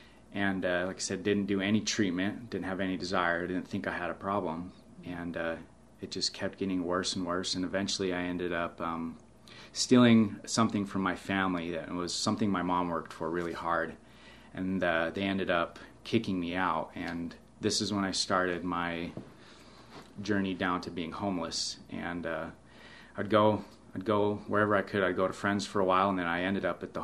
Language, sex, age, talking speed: English, male, 30-49, 200 wpm